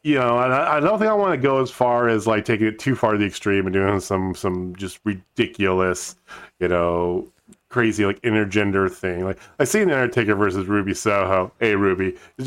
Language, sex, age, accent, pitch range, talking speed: English, male, 40-59, American, 95-120 Hz, 210 wpm